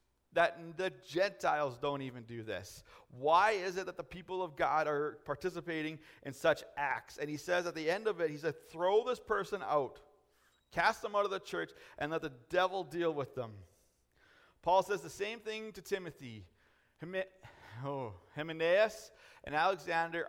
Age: 40-59